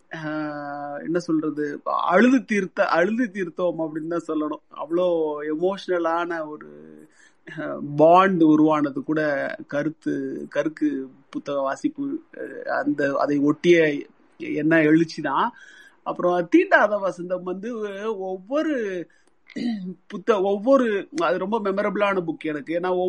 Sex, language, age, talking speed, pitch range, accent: male, Tamil, 30-49, 95 wpm, 160-235 Hz, native